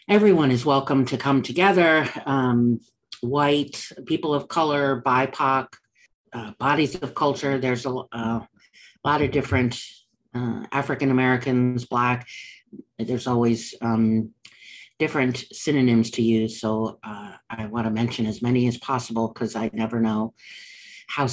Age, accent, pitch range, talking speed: 50-69, American, 115-135 Hz, 130 wpm